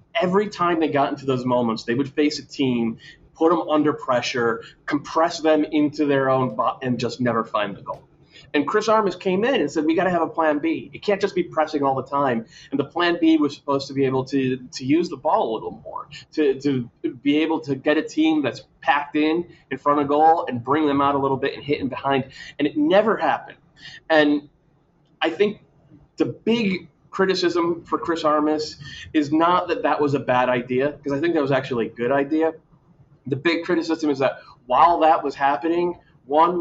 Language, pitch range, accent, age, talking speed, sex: English, 140-165 Hz, American, 30-49, 220 wpm, male